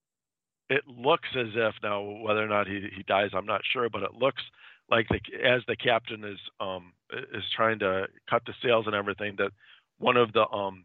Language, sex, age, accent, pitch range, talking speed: English, male, 40-59, American, 95-110 Hz, 205 wpm